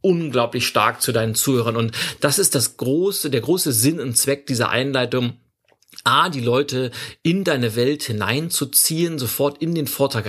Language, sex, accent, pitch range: German, male, German, 115-145 Hz